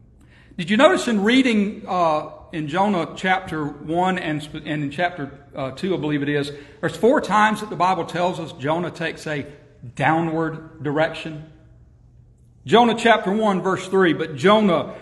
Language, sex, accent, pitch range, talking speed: English, male, American, 150-205 Hz, 160 wpm